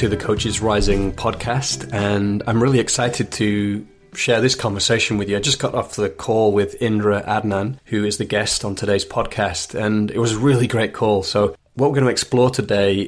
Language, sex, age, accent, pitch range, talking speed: English, male, 30-49, British, 100-115 Hz, 205 wpm